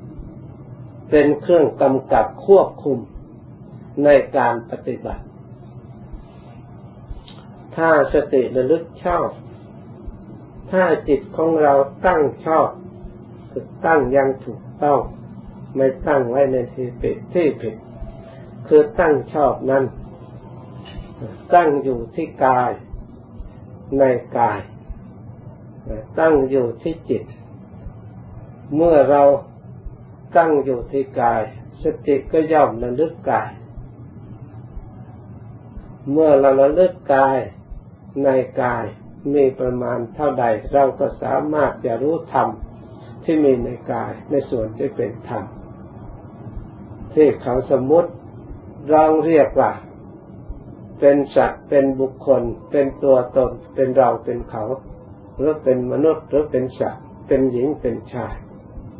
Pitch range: 115-140 Hz